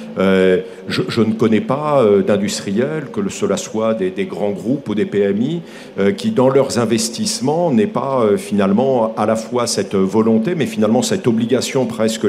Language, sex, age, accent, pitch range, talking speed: French, male, 50-69, French, 110-140 Hz, 180 wpm